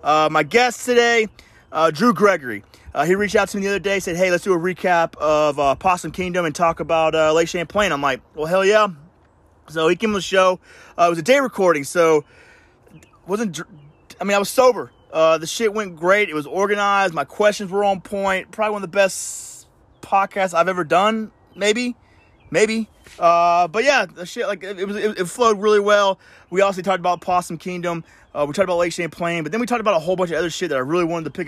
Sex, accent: male, American